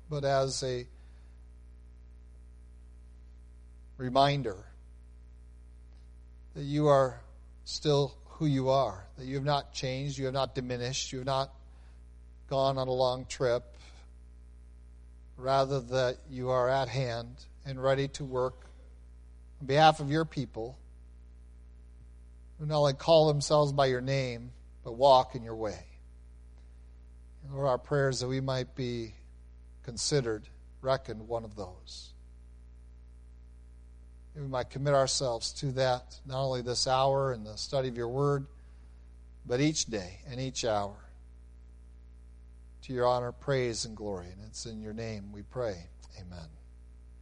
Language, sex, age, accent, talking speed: English, male, 50-69, American, 135 wpm